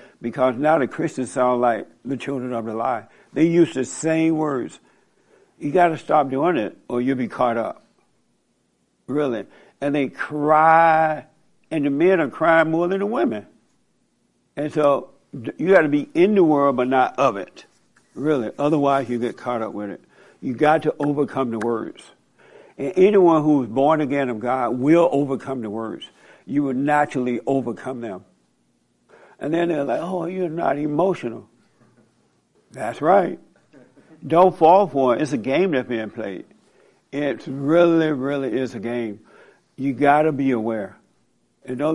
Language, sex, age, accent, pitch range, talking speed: English, male, 60-79, American, 120-160 Hz, 165 wpm